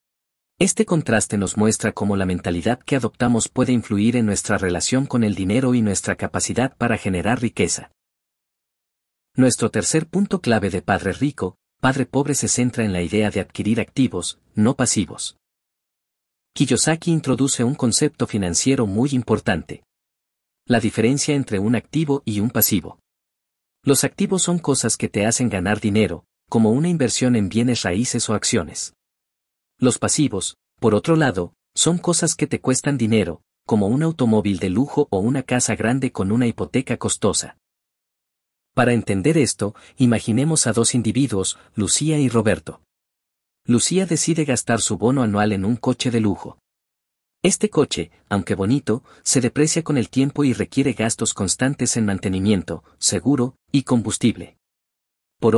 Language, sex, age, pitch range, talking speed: Spanish, male, 40-59, 100-130 Hz, 150 wpm